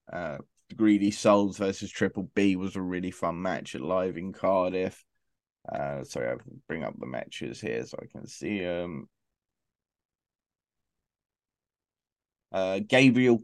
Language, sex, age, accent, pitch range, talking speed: English, male, 20-39, British, 100-125 Hz, 135 wpm